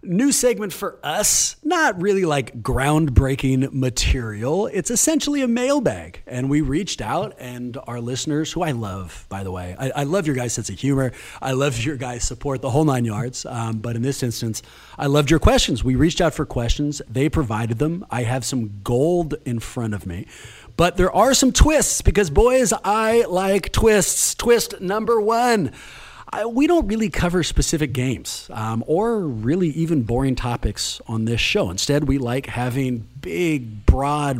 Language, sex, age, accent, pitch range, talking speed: English, male, 30-49, American, 120-185 Hz, 180 wpm